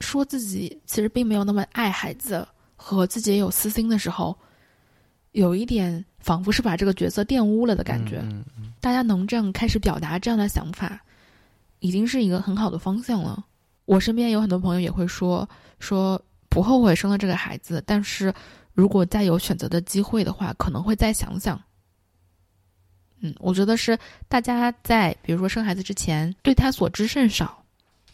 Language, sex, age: Chinese, female, 20-39